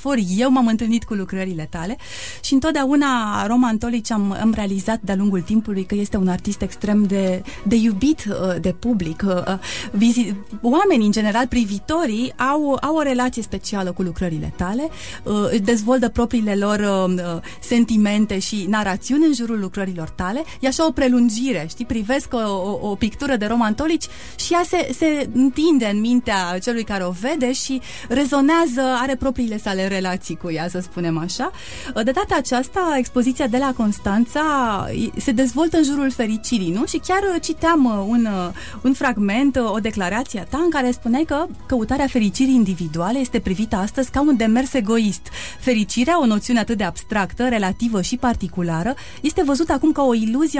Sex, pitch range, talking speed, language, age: female, 205-270 Hz, 155 wpm, Romanian, 30-49